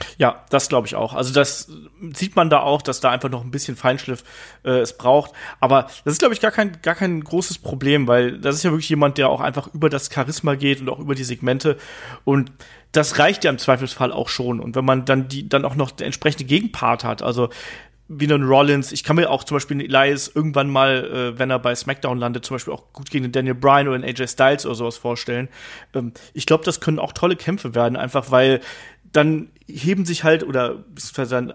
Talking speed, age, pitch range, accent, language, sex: 230 wpm, 30-49, 130-165 Hz, German, German, male